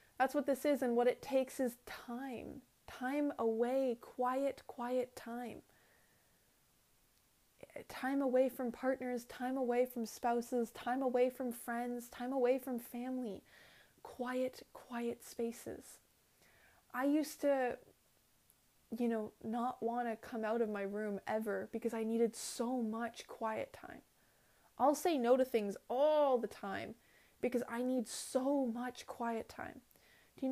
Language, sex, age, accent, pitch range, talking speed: English, female, 20-39, American, 225-255 Hz, 140 wpm